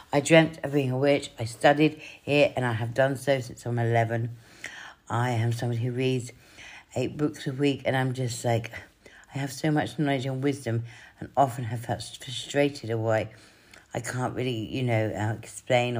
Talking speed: 190 wpm